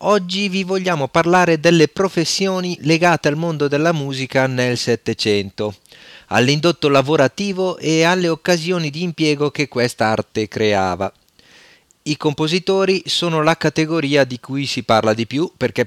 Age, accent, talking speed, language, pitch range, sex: 40-59, native, 130 wpm, Italian, 120-165 Hz, male